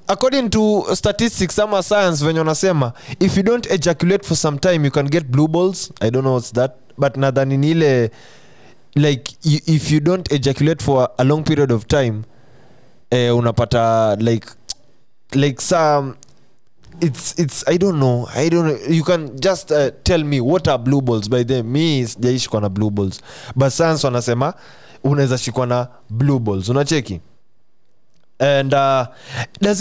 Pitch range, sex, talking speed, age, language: 125-170 Hz, male, 150 wpm, 20-39, English